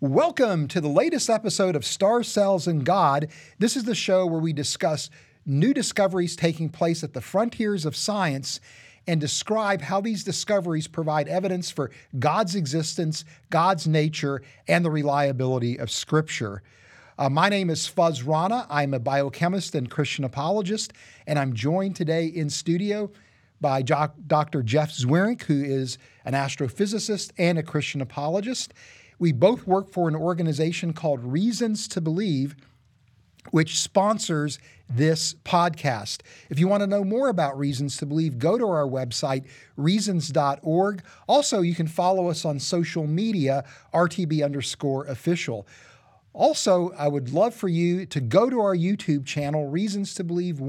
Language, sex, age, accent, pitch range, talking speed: English, male, 40-59, American, 140-190 Hz, 150 wpm